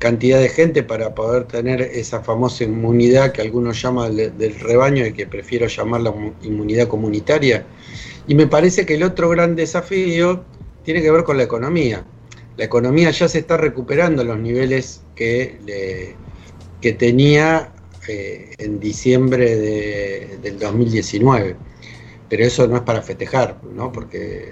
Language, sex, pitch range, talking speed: Spanish, male, 110-135 Hz, 150 wpm